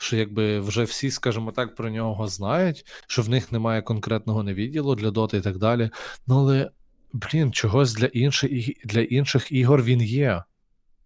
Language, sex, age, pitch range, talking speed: Ukrainian, male, 20-39, 110-125 Hz, 170 wpm